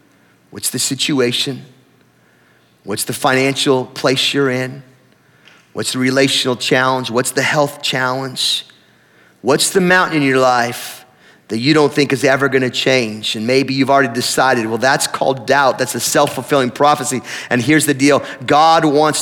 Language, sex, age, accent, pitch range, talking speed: English, male, 30-49, American, 130-160 Hz, 155 wpm